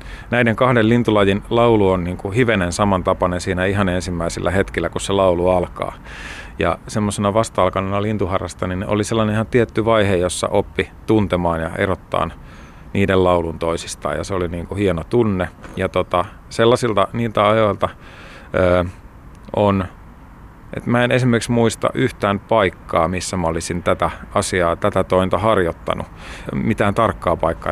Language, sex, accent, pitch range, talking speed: Finnish, male, native, 90-105 Hz, 140 wpm